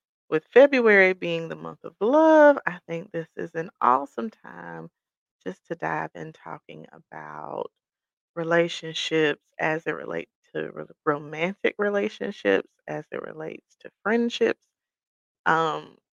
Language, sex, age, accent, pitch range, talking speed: English, female, 30-49, American, 155-235 Hz, 120 wpm